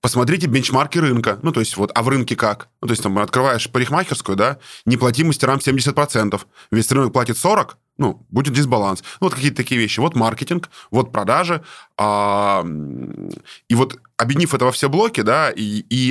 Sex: male